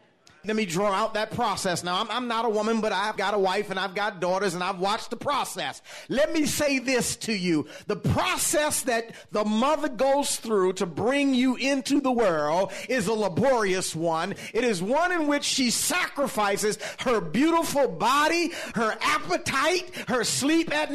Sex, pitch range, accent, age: male, 180-275 Hz, American, 40-59